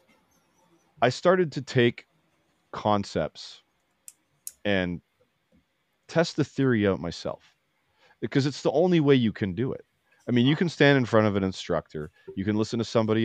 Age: 30-49